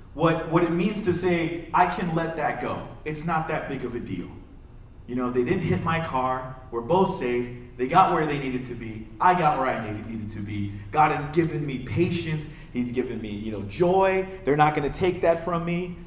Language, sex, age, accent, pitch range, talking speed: English, male, 30-49, American, 120-180 Hz, 230 wpm